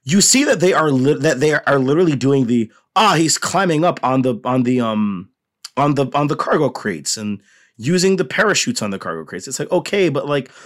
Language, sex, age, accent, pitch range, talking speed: English, male, 30-49, American, 120-170 Hz, 225 wpm